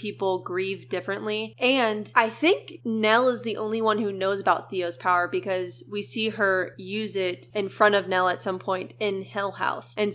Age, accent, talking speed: 20-39, American, 195 wpm